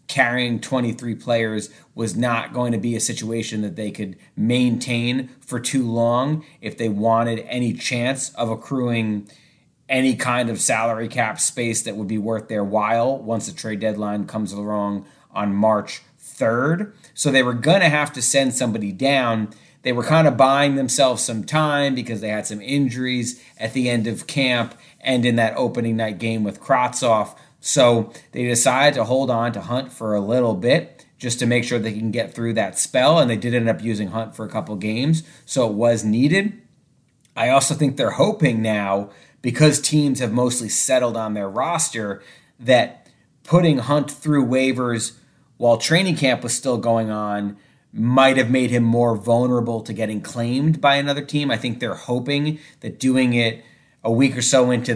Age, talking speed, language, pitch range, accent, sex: 30-49, 185 wpm, English, 110-135 Hz, American, male